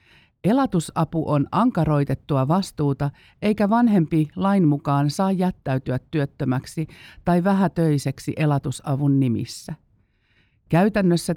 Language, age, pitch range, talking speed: Finnish, 50-69, 135-175 Hz, 85 wpm